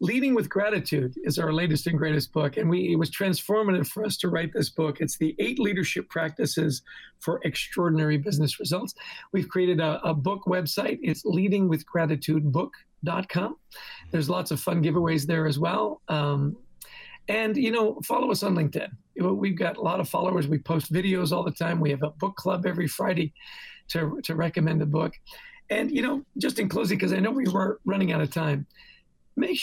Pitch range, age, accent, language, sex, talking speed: 155-195 Hz, 40-59, American, English, male, 190 wpm